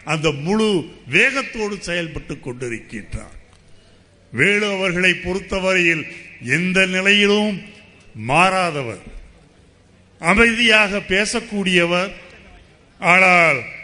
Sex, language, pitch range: male, Tamil, 145-200 Hz